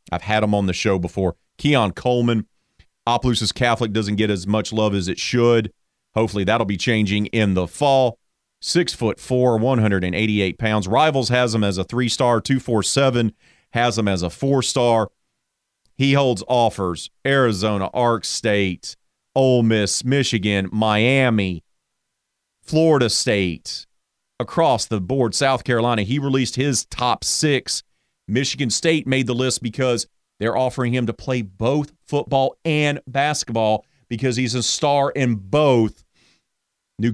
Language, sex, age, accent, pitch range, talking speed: English, male, 40-59, American, 105-130 Hz, 145 wpm